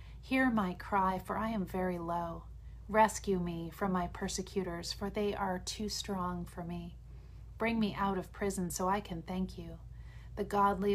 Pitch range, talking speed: 175-210 Hz, 175 wpm